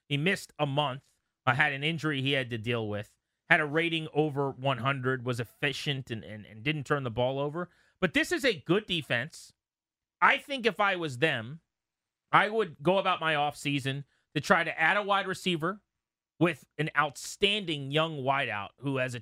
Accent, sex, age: American, male, 30-49